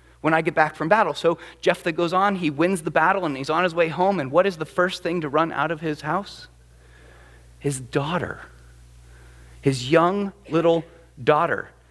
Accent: American